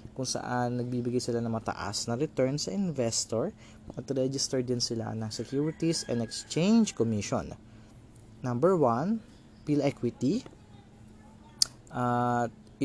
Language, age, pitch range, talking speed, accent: Filipino, 20-39, 115-130 Hz, 105 wpm, native